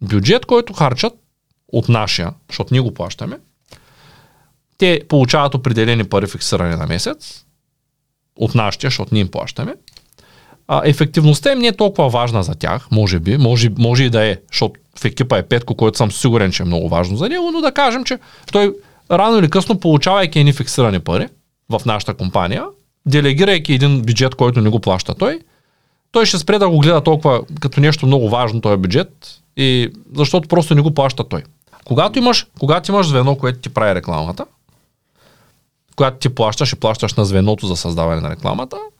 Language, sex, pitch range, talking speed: Bulgarian, male, 115-155 Hz, 175 wpm